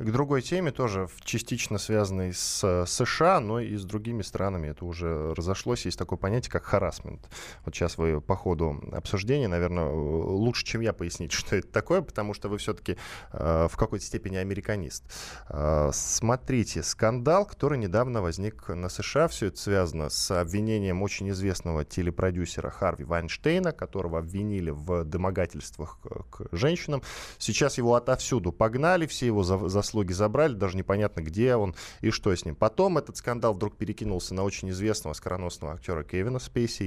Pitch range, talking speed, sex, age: 90-115 Hz, 155 wpm, male, 20-39